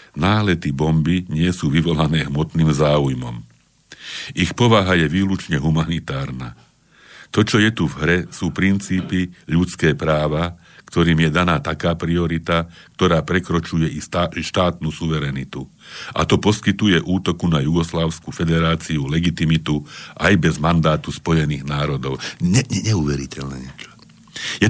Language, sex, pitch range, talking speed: Slovak, male, 75-90 Hz, 120 wpm